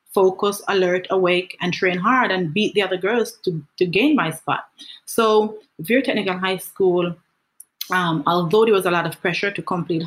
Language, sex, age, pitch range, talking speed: English, female, 30-49, 165-205 Hz, 185 wpm